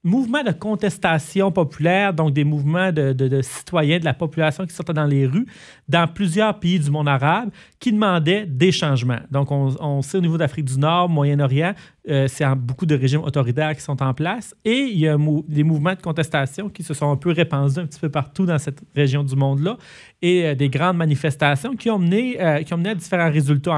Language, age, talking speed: French, 40-59, 225 wpm